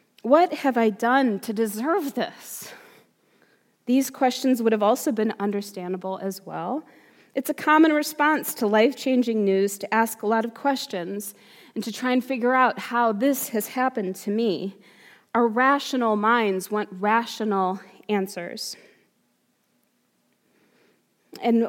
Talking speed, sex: 135 wpm, female